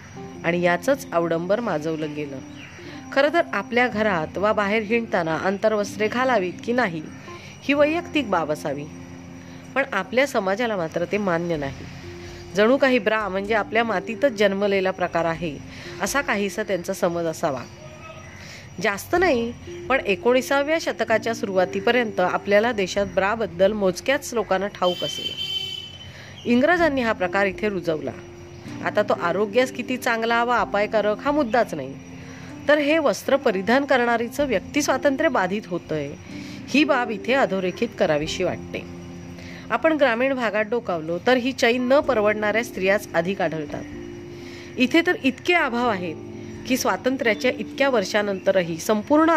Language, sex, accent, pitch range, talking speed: Marathi, female, native, 170-245 Hz, 110 wpm